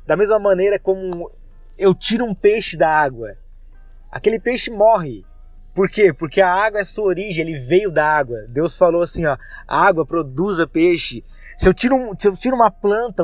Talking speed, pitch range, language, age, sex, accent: 190 wpm, 155-205 Hz, Portuguese, 20-39, male, Brazilian